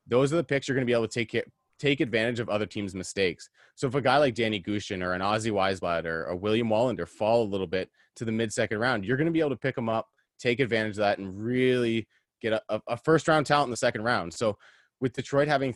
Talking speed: 265 wpm